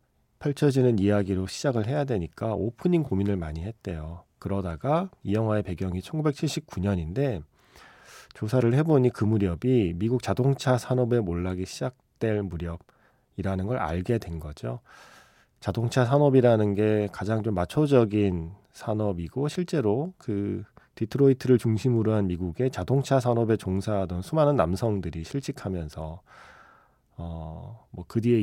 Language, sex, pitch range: Korean, male, 95-125 Hz